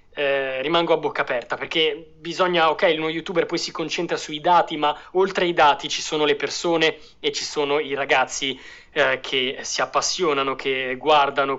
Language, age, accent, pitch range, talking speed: Italian, 20-39, native, 140-180 Hz, 175 wpm